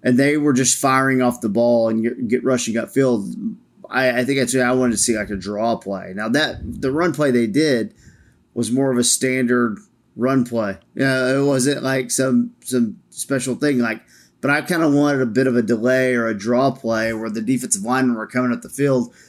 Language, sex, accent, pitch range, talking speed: English, male, American, 115-135 Hz, 225 wpm